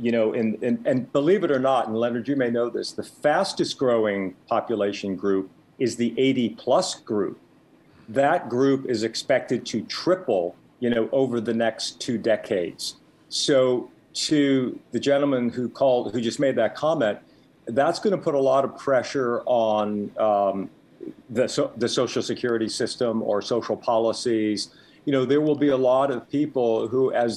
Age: 50-69